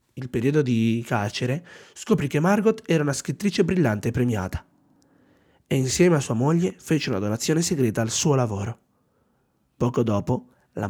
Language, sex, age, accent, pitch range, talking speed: Italian, male, 30-49, native, 120-170 Hz, 155 wpm